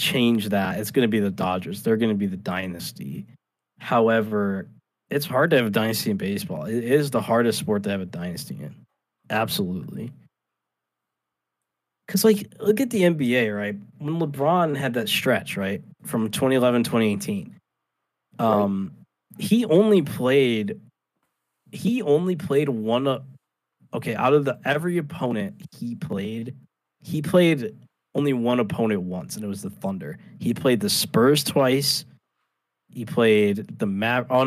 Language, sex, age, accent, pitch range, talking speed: English, male, 20-39, American, 100-150 Hz, 150 wpm